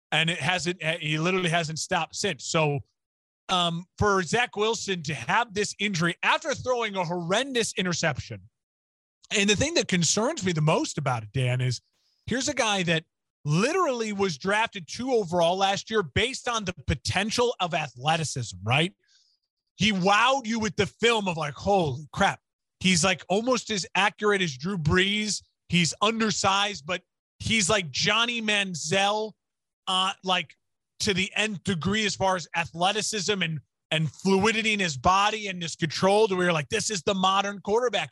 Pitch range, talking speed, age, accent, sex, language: 165-210 Hz, 165 wpm, 30-49, American, male, English